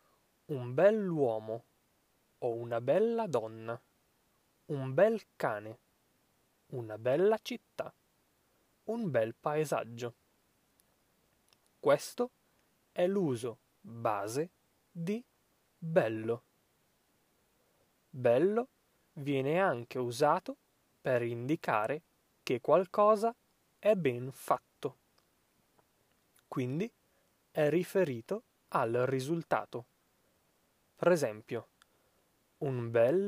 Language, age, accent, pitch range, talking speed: Italian, 20-39, native, 120-185 Hz, 75 wpm